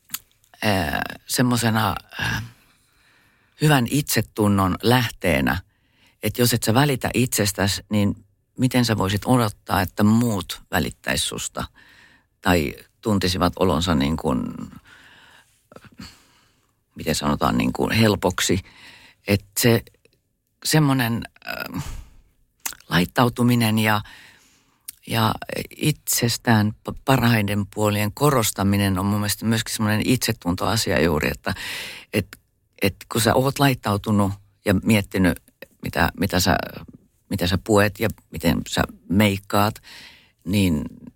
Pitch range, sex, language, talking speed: 100-120 Hz, female, Finnish, 105 wpm